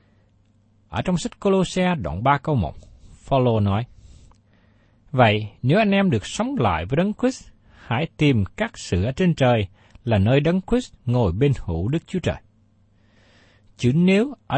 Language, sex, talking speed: Vietnamese, male, 165 wpm